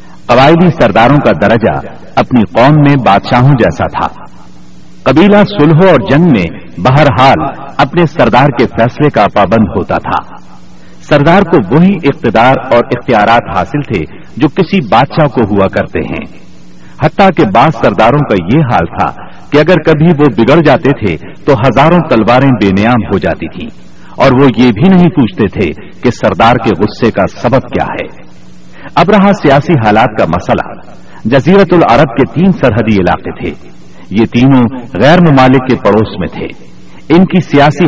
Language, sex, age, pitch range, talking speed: Urdu, male, 60-79, 105-155 Hz, 160 wpm